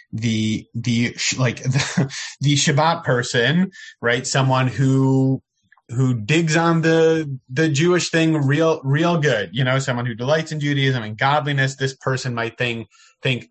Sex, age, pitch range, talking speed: male, 30-49, 120-150 Hz, 150 wpm